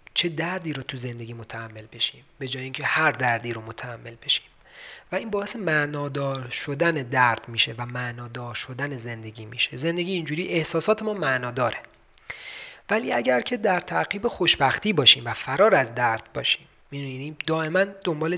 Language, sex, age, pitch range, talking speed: Persian, male, 30-49, 125-165 Hz, 155 wpm